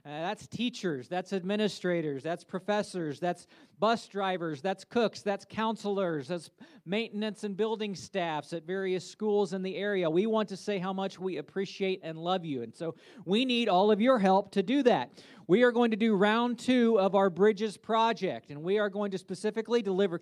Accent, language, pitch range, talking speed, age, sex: American, English, 180-215 Hz, 195 wpm, 40-59, male